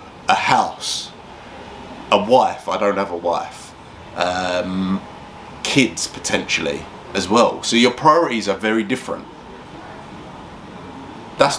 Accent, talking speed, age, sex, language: British, 110 wpm, 30-49, male, English